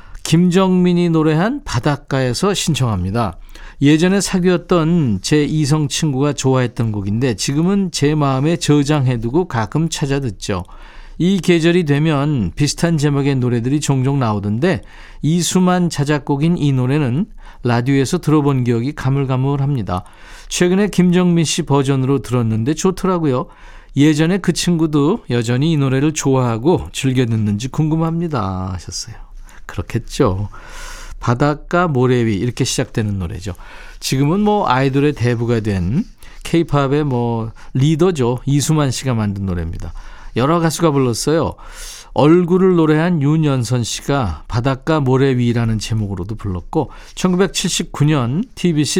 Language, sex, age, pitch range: Korean, male, 40-59, 120-165 Hz